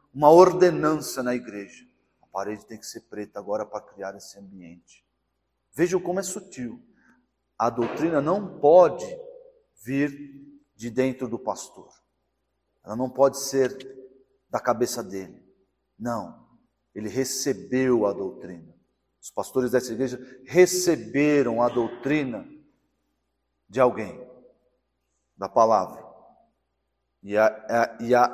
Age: 40-59